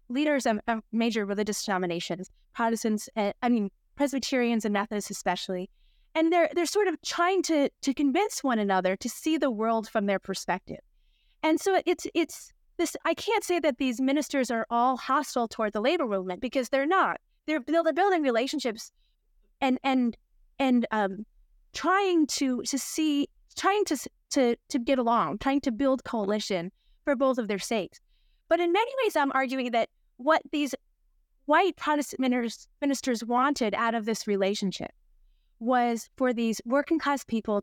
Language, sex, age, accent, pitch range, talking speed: English, female, 30-49, American, 220-285 Hz, 160 wpm